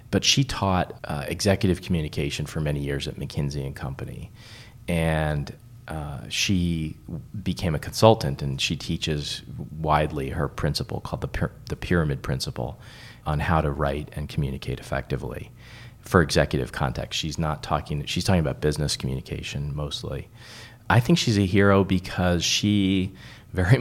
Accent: American